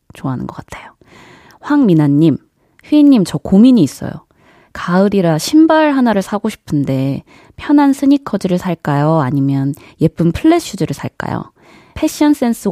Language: Korean